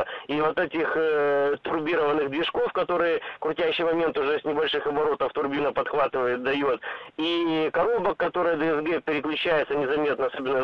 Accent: native